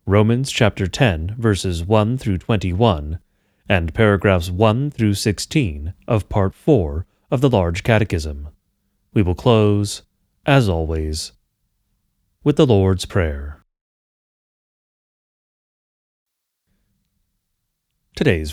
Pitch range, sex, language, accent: 90-115 Hz, male, English, American